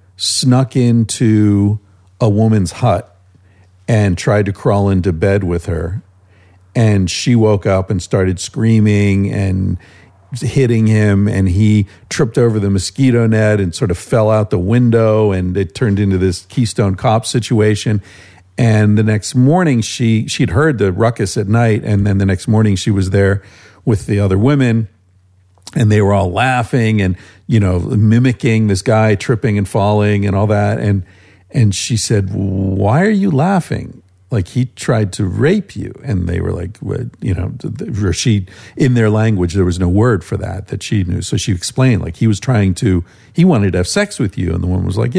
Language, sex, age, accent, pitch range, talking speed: English, male, 50-69, American, 95-120 Hz, 185 wpm